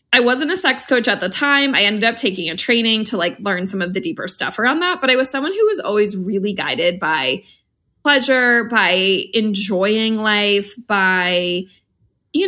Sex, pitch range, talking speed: female, 195-270 Hz, 190 wpm